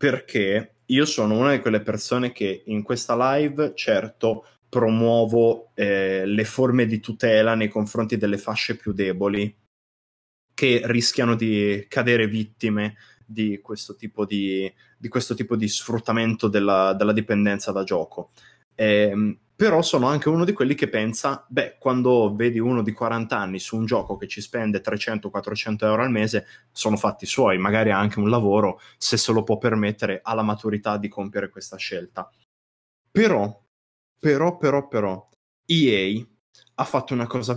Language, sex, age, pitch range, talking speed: Italian, male, 20-39, 105-130 Hz, 150 wpm